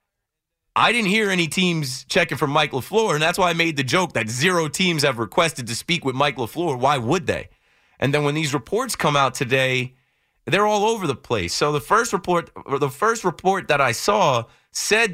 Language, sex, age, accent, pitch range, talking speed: English, male, 30-49, American, 110-150 Hz, 215 wpm